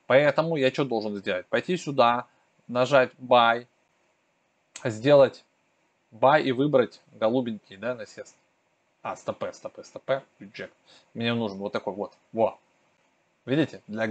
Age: 20-39